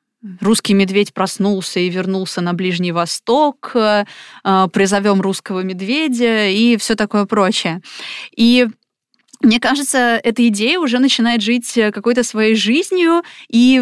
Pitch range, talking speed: 195-250 Hz, 115 wpm